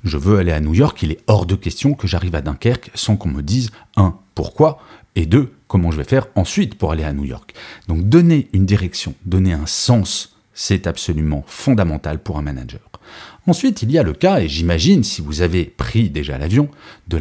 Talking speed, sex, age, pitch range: 215 wpm, male, 40-59, 80-115 Hz